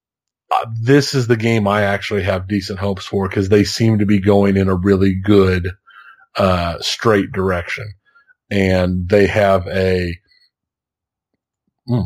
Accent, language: American, English